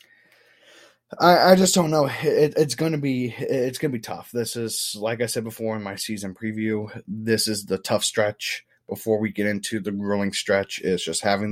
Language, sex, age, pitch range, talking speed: English, male, 20-39, 105-120 Hz, 205 wpm